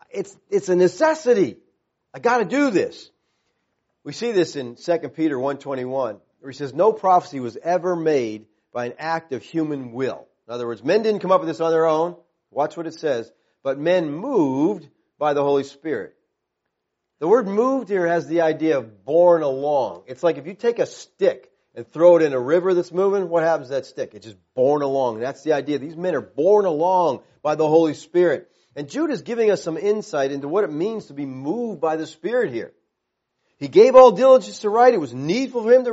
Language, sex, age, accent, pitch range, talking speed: English, male, 40-59, American, 145-230 Hz, 220 wpm